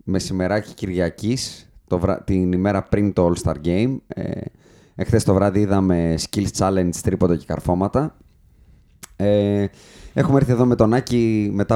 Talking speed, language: 145 wpm, Greek